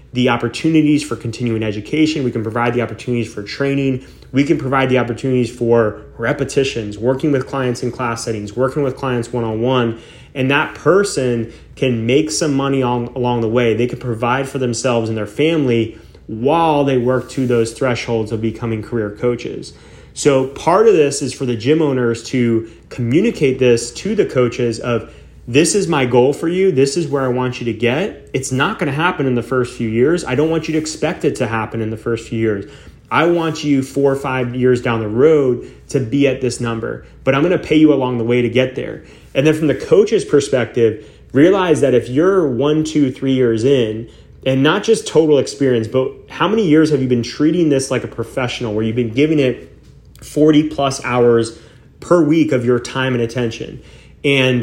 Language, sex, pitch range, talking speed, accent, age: English, male, 115-140 Hz, 205 wpm, American, 30-49